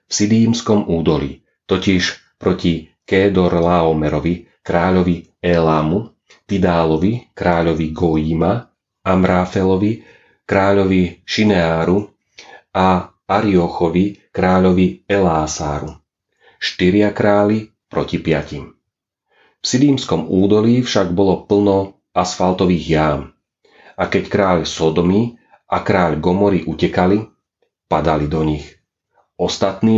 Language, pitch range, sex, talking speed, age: Slovak, 85-100 Hz, male, 85 wpm, 40-59